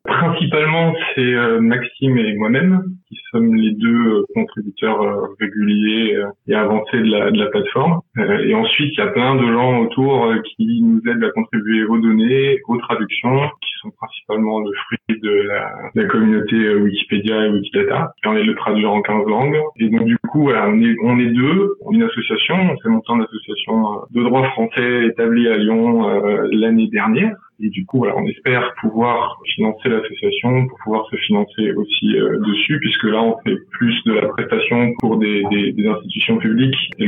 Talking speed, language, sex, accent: 195 wpm, French, male, French